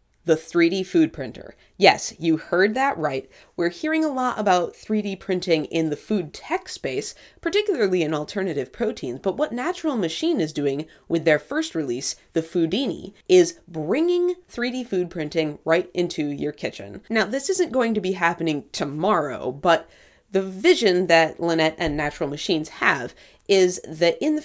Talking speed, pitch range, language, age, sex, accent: 165 wpm, 160-220 Hz, English, 30-49, female, American